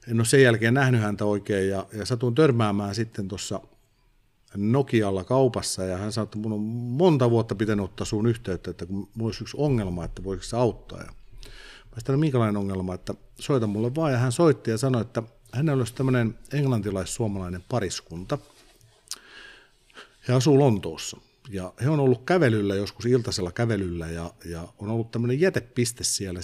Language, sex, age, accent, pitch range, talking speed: Finnish, male, 50-69, native, 100-125 Hz, 170 wpm